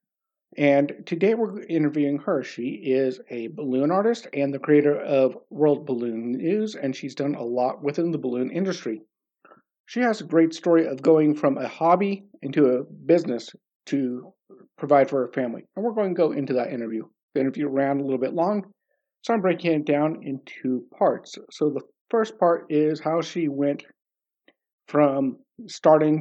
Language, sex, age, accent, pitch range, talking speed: English, male, 50-69, American, 140-180 Hz, 175 wpm